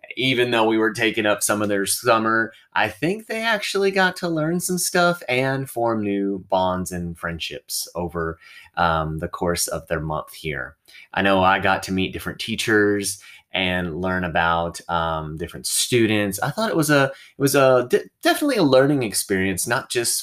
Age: 20-39